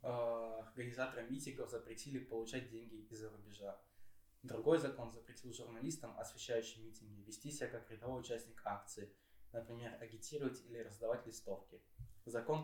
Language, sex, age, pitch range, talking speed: Russian, male, 20-39, 110-125 Hz, 120 wpm